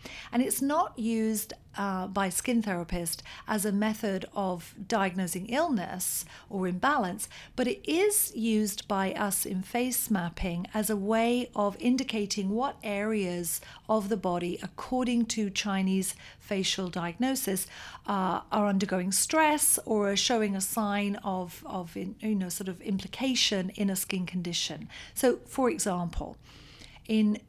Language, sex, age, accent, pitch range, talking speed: English, female, 50-69, British, 185-225 Hz, 140 wpm